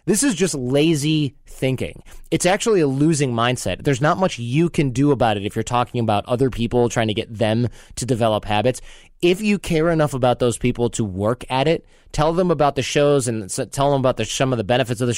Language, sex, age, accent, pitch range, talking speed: English, male, 20-39, American, 110-140 Hz, 225 wpm